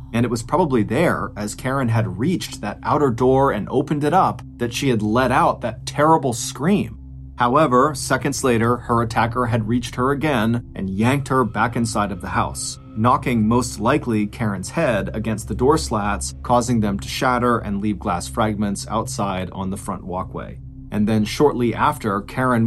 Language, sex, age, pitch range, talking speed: English, male, 30-49, 105-130 Hz, 180 wpm